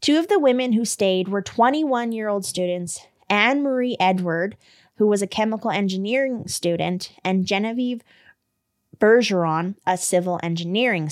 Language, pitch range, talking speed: English, 180-225 Hz, 125 wpm